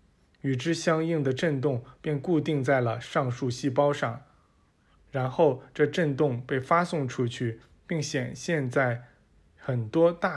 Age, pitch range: 20-39, 125-150 Hz